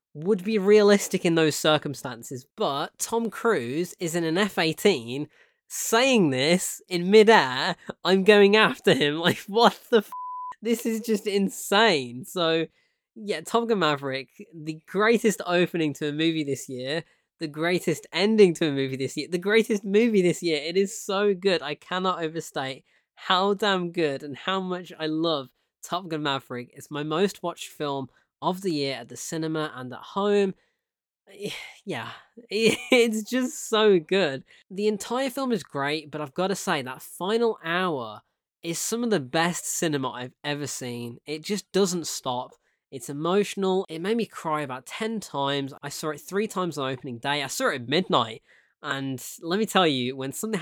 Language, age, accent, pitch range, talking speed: English, 20-39, British, 145-205 Hz, 175 wpm